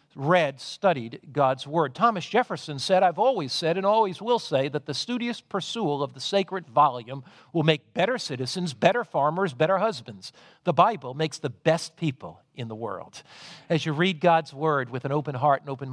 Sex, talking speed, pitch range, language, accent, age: male, 190 wpm, 140-180 Hz, English, American, 50-69